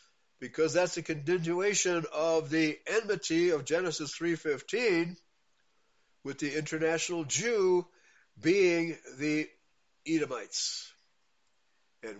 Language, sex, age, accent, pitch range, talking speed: English, male, 60-79, American, 130-190 Hz, 90 wpm